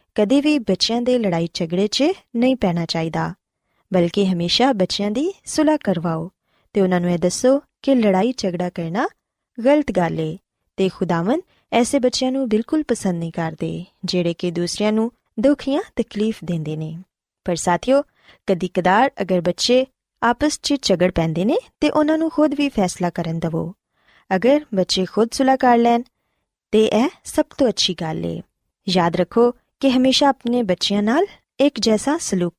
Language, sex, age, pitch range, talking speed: Punjabi, female, 20-39, 180-260 Hz, 155 wpm